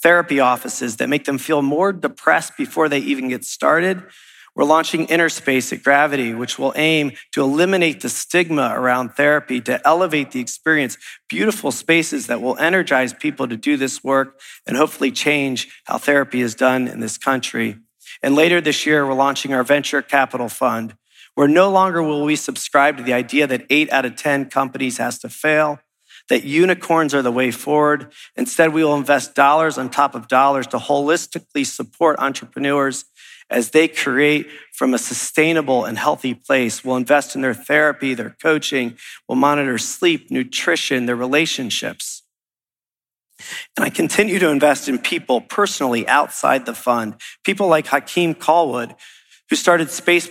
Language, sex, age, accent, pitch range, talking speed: English, male, 40-59, American, 130-160 Hz, 165 wpm